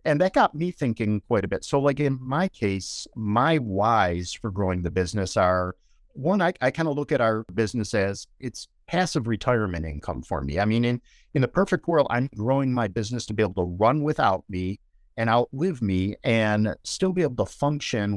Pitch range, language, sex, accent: 95-130 Hz, English, male, American